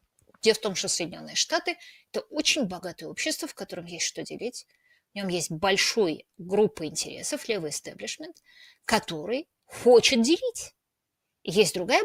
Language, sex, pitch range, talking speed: Russian, female, 190-260 Hz, 140 wpm